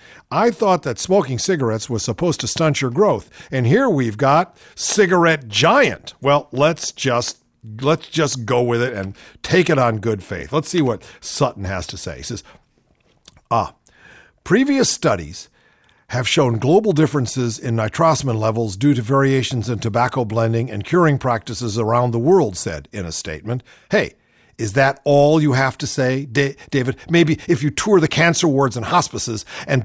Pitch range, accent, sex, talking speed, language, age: 120-165 Hz, American, male, 175 wpm, English, 50-69